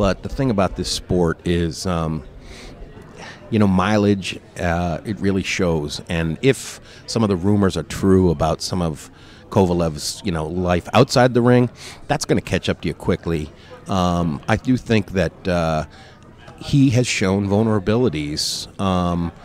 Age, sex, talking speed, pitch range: 40-59, male, 160 wpm, 85-105 Hz